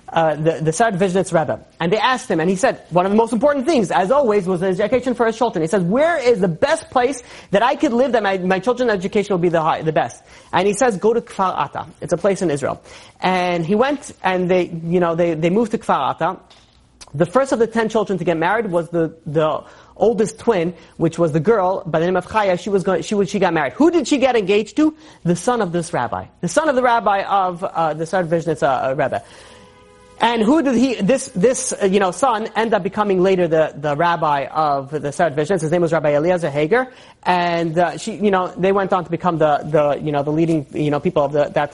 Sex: male